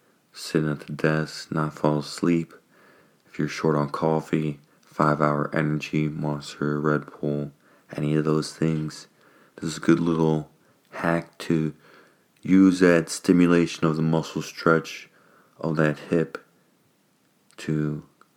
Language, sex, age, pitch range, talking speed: English, male, 30-49, 75-85 Hz, 125 wpm